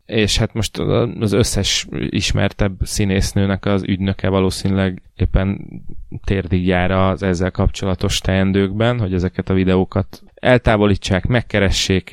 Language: Hungarian